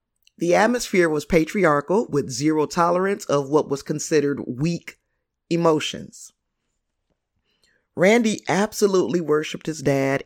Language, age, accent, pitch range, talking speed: English, 30-49, American, 140-175 Hz, 105 wpm